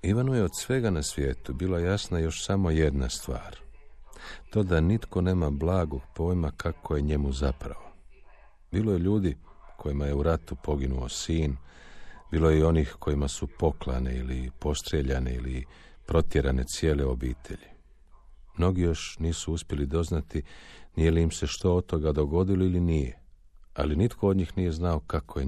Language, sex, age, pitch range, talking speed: Croatian, male, 50-69, 70-90 Hz, 160 wpm